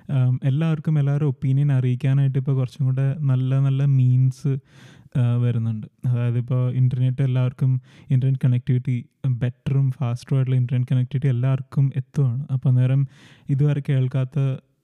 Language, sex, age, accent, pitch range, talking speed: Malayalam, male, 20-39, native, 130-140 Hz, 110 wpm